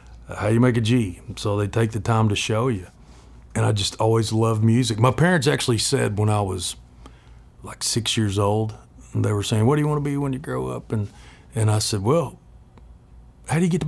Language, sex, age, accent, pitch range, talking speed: English, male, 40-59, American, 95-115 Hz, 230 wpm